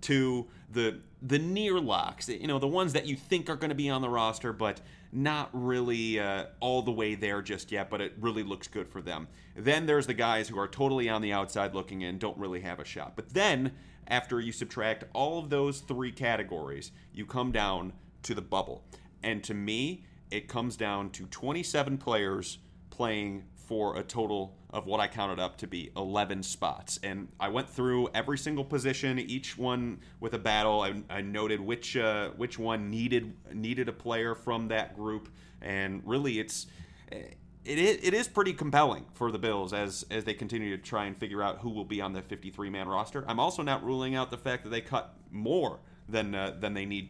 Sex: male